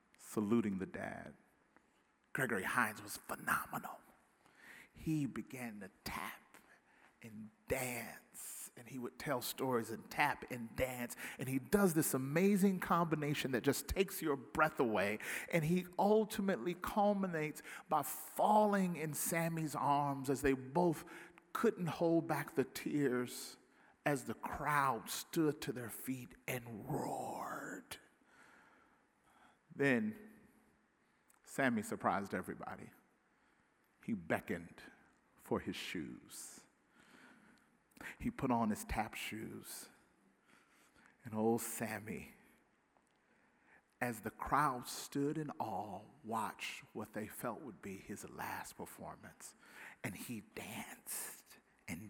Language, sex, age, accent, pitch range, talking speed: English, male, 50-69, American, 125-170 Hz, 110 wpm